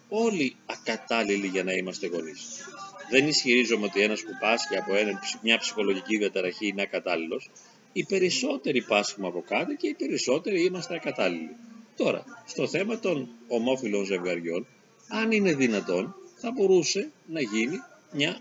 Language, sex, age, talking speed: Greek, male, 40-59, 140 wpm